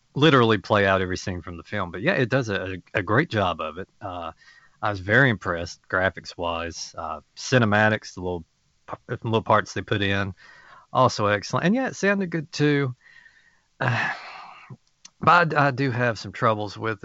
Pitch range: 95-130 Hz